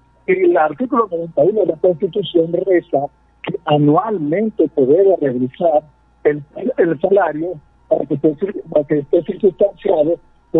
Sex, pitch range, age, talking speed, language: male, 145-200 Hz, 50-69, 125 wpm, Spanish